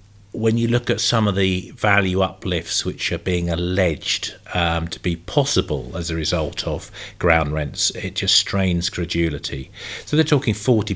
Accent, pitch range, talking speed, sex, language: British, 85-105 Hz, 170 wpm, male, English